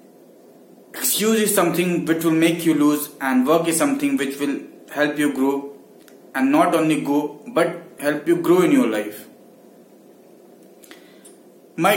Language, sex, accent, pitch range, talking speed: English, male, Indian, 150-200 Hz, 145 wpm